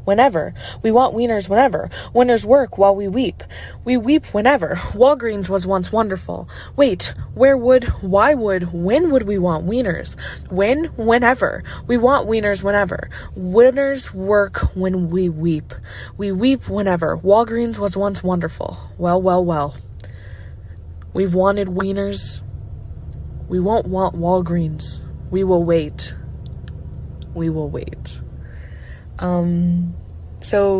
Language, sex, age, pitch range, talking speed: English, female, 20-39, 165-205 Hz, 125 wpm